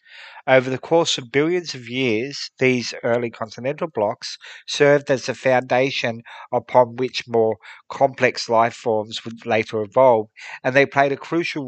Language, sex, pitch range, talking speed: English, male, 115-140 Hz, 150 wpm